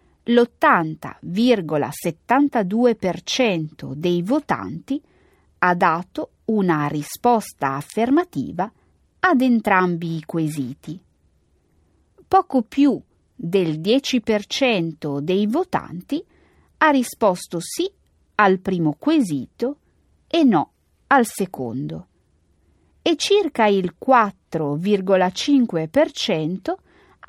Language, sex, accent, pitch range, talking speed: Italian, female, native, 160-265 Hz, 70 wpm